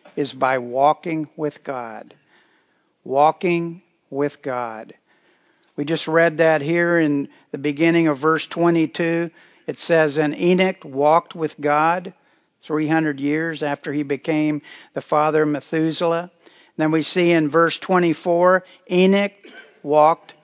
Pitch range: 150-185 Hz